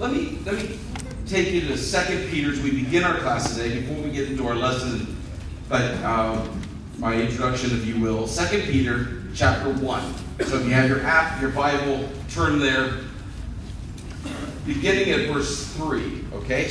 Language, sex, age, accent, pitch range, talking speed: English, male, 40-59, American, 120-155 Hz, 165 wpm